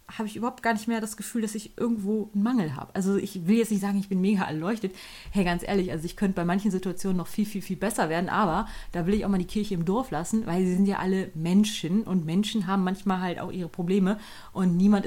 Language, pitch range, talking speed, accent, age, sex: German, 180-215 Hz, 265 wpm, German, 30-49, female